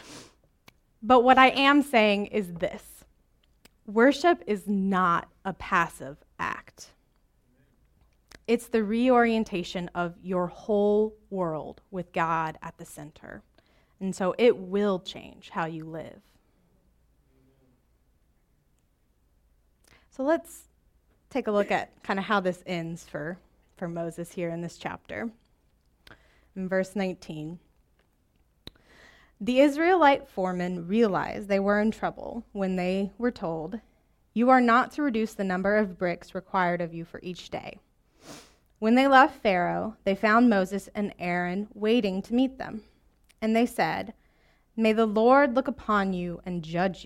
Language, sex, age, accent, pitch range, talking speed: English, female, 20-39, American, 175-230 Hz, 135 wpm